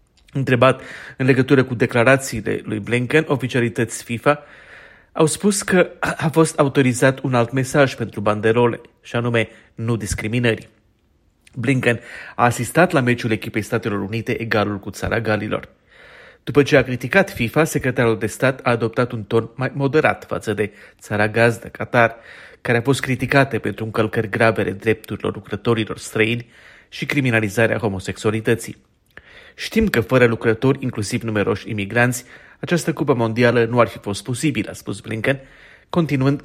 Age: 30-49